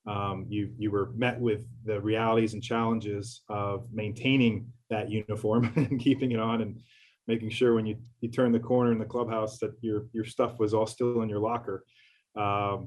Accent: American